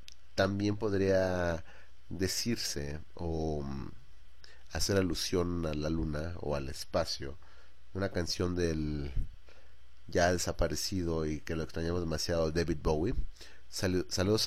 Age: 30-49